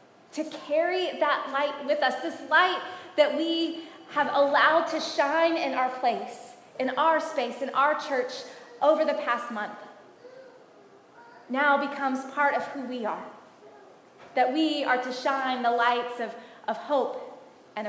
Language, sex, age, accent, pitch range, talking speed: English, female, 20-39, American, 245-305 Hz, 150 wpm